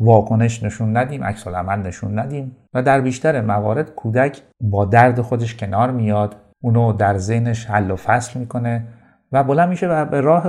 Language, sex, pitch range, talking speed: Persian, male, 105-135 Hz, 165 wpm